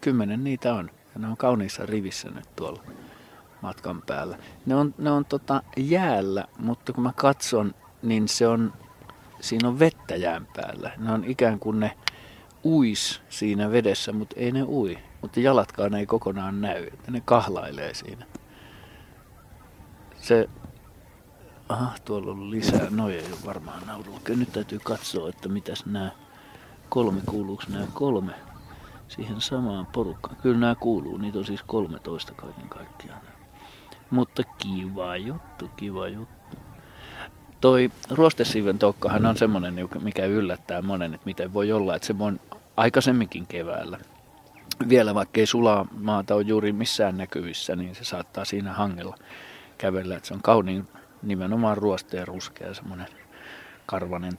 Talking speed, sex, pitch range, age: 140 wpm, male, 95-120 Hz, 50-69